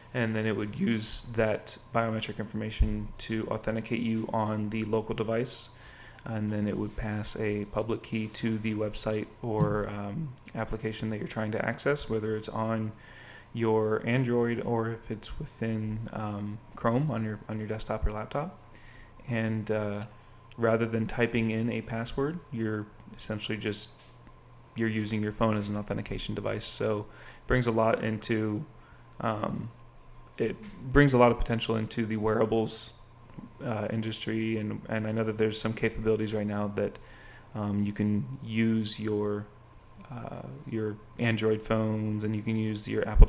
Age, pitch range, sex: 30-49, 105-115 Hz, male